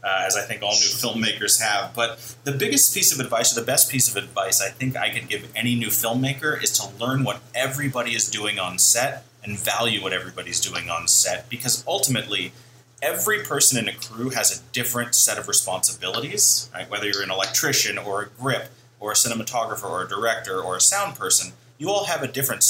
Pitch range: 110-130 Hz